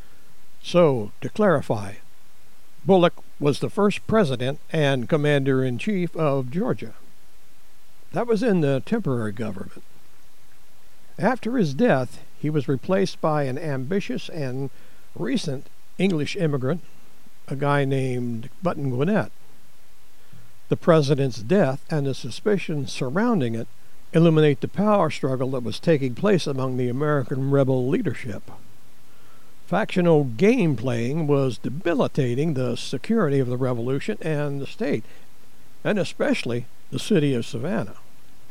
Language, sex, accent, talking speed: English, male, American, 120 wpm